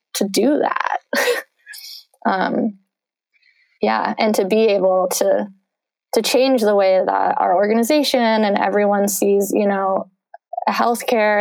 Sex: female